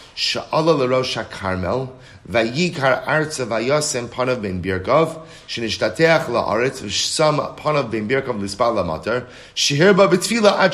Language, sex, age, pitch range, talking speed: English, male, 30-49, 115-150 Hz, 55 wpm